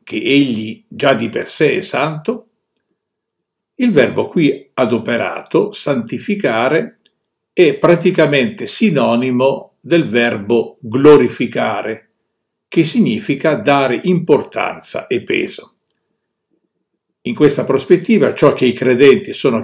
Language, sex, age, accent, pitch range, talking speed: Italian, male, 60-79, native, 130-195 Hz, 100 wpm